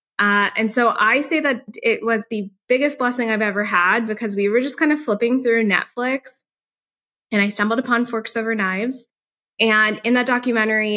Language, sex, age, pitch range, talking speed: English, female, 10-29, 190-225 Hz, 185 wpm